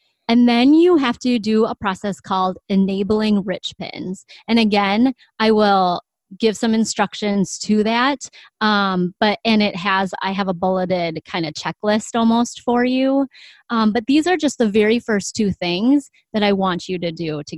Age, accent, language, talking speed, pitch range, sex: 30-49, American, English, 180 wpm, 185-245 Hz, female